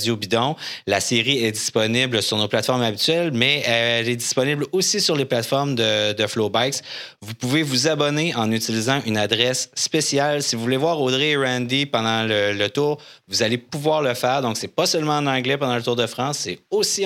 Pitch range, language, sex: 105-135 Hz, French, male